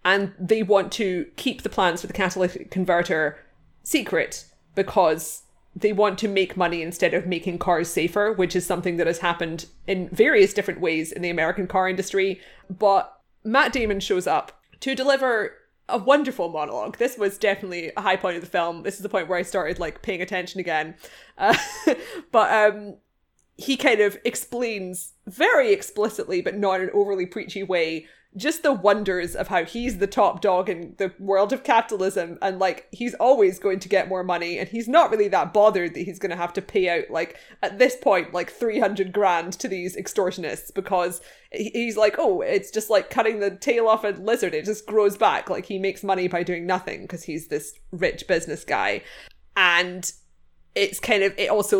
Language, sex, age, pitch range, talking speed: English, female, 20-39, 180-210 Hz, 195 wpm